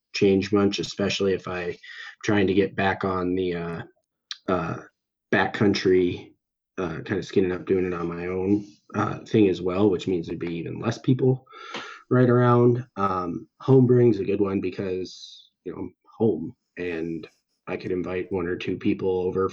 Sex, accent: male, American